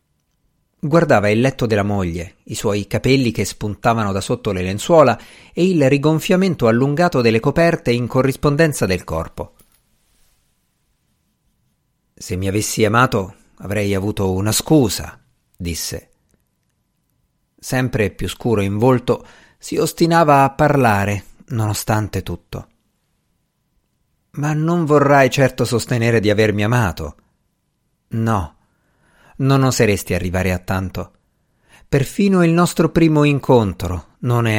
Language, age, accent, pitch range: Italian, 50-69, native, 100-130 Hz